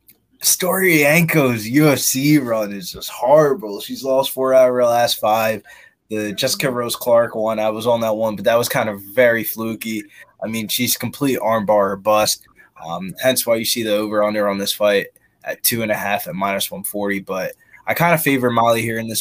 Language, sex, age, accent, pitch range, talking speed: English, male, 20-39, American, 100-125 Hz, 195 wpm